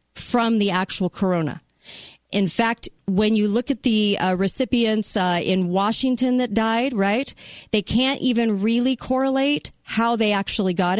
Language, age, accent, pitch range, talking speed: English, 40-59, American, 170-220 Hz, 155 wpm